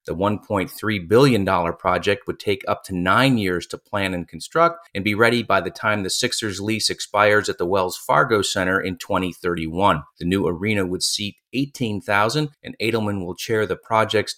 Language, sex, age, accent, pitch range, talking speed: English, male, 30-49, American, 95-120 Hz, 180 wpm